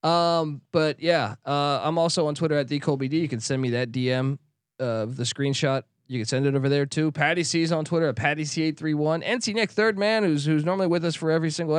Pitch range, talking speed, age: 135-170 Hz, 260 wpm, 20-39